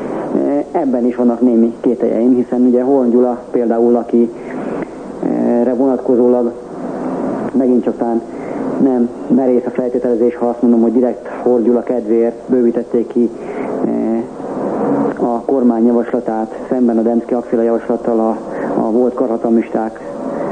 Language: Hungarian